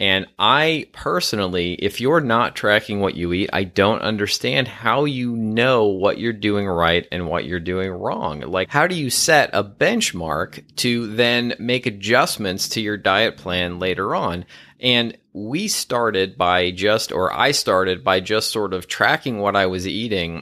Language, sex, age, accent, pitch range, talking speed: English, male, 30-49, American, 90-110 Hz, 175 wpm